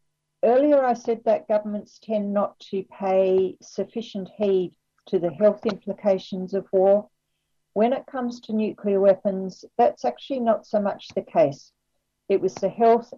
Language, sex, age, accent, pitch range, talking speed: English, female, 50-69, Australian, 170-205 Hz, 155 wpm